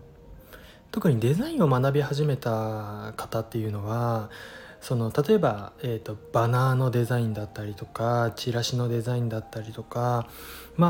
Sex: male